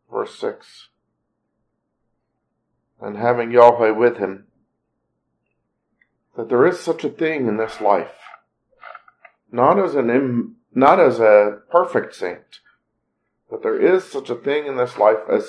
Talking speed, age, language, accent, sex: 125 wpm, 40-59, English, American, male